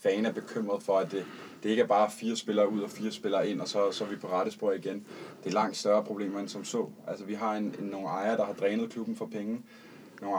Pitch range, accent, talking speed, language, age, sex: 105-125 Hz, native, 270 wpm, Danish, 20-39, male